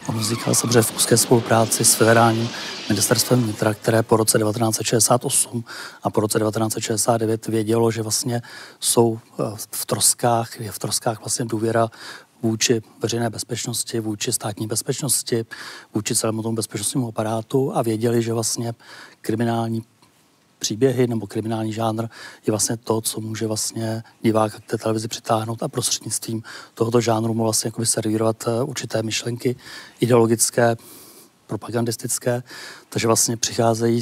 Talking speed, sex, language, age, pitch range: 130 wpm, male, Czech, 30-49, 110-120 Hz